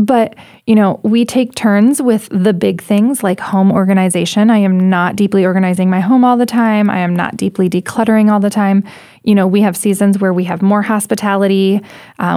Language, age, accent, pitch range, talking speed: English, 20-39, American, 190-220 Hz, 205 wpm